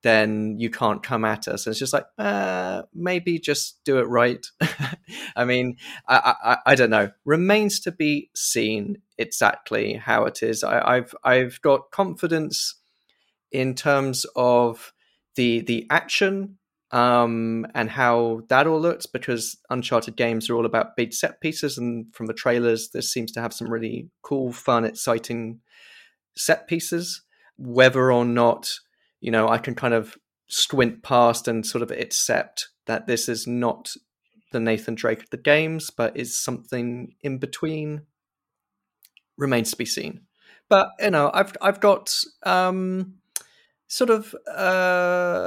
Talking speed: 150 wpm